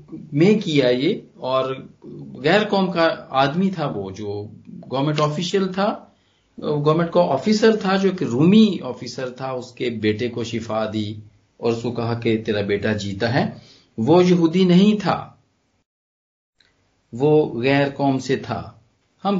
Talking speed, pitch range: 150 wpm, 115-170 Hz